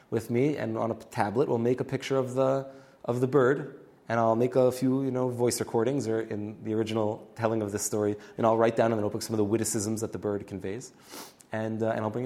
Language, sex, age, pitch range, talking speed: English, male, 20-39, 105-125 Hz, 255 wpm